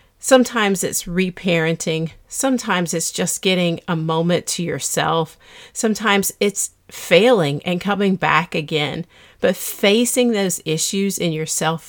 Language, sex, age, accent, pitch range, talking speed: English, female, 40-59, American, 165-200 Hz, 120 wpm